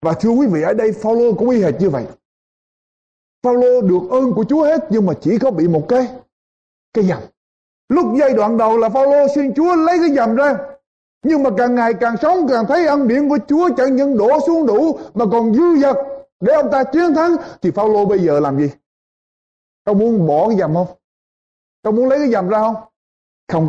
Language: Vietnamese